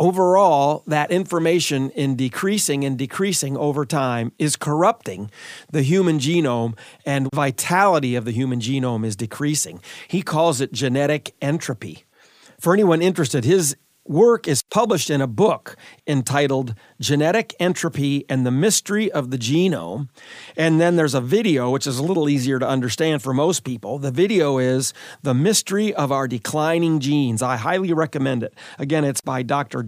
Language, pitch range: English, 135-170 Hz